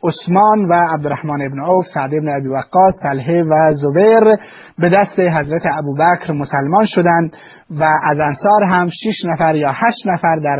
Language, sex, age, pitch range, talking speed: Persian, male, 30-49, 140-175 Hz, 160 wpm